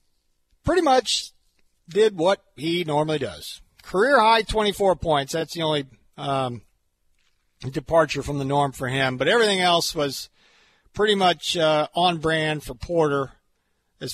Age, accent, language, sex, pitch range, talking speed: 50-69, American, English, male, 135-175 Hz, 135 wpm